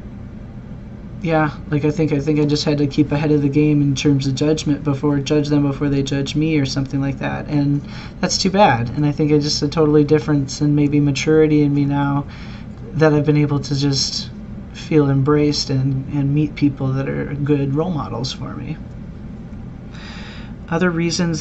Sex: male